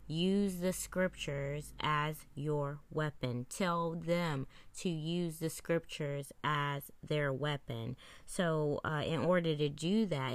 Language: English